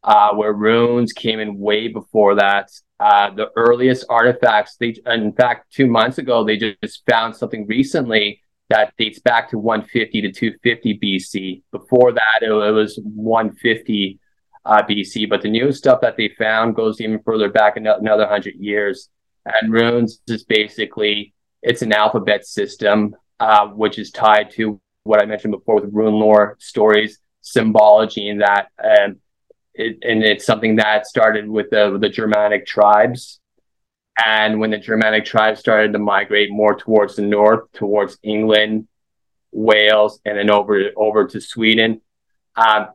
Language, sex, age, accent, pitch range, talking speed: English, male, 20-39, American, 105-110 Hz, 155 wpm